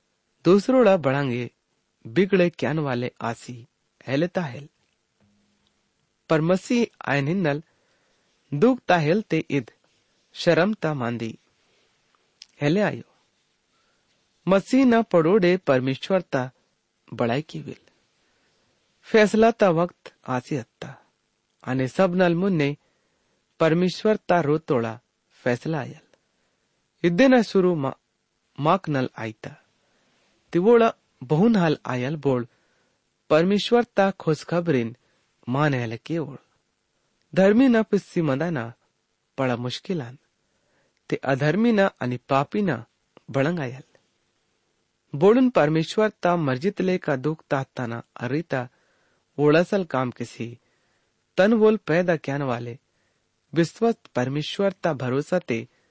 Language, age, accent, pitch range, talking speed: English, 30-49, Indian, 130-185 Hz, 90 wpm